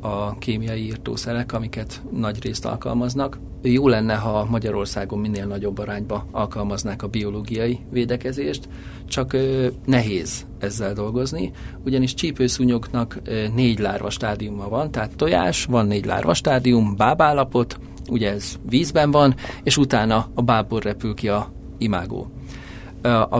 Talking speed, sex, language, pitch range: 125 wpm, male, Hungarian, 100-130 Hz